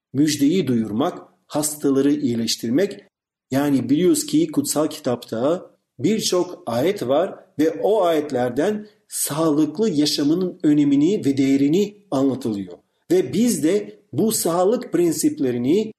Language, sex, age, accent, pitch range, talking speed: Turkish, male, 50-69, native, 130-210 Hz, 100 wpm